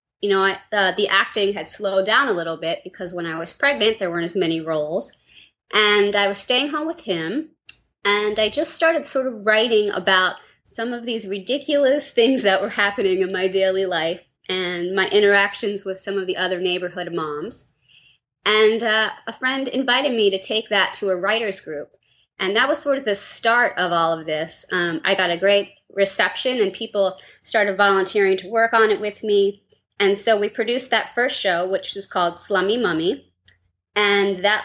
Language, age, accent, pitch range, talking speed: English, 20-39, American, 185-225 Hz, 195 wpm